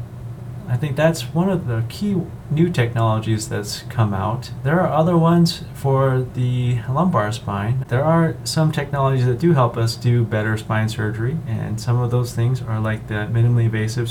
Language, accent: English, American